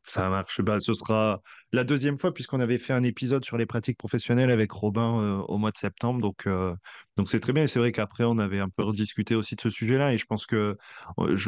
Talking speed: 255 wpm